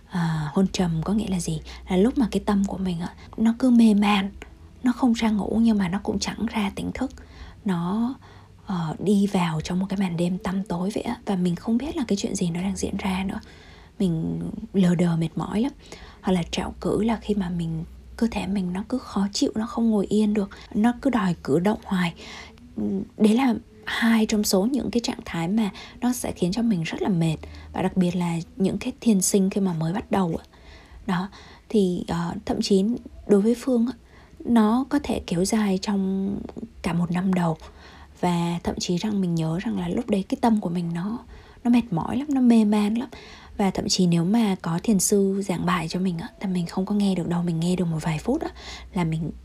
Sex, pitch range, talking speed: female, 180-225 Hz, 220 wpm